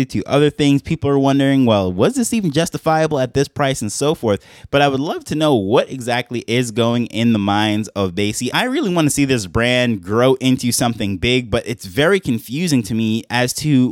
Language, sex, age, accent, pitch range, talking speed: English, male, 20-39, American, 110-135 Hz, 215 wpm